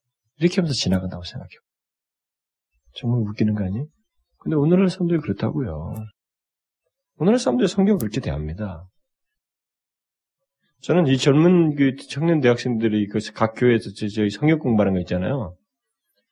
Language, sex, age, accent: Korean, male, 40-59, native